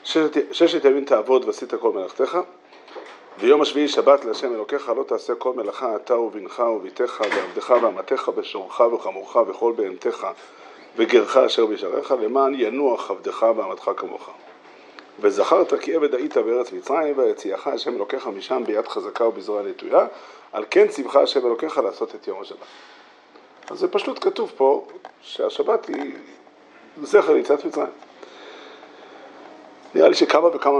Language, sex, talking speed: Hebrew, male, 135 wpm